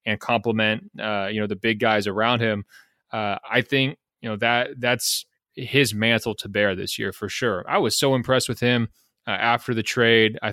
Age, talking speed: 20-39, 205 wpm